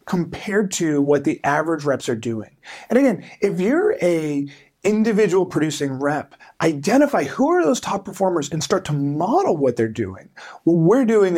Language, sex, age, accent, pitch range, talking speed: English, male, 30-49, American, 140-195 Hz, 170 wpm